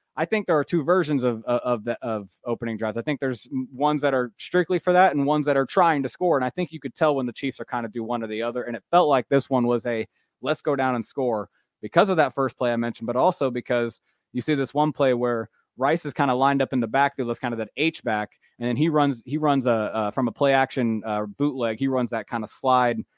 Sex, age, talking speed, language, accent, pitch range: male, 20-39, 285 wpm, English, American, 115-140 Hz